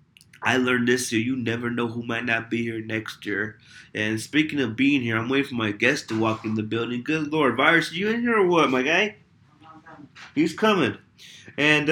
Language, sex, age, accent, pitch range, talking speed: English, male, 20-39, American, 120-155 Hz, 215 wpm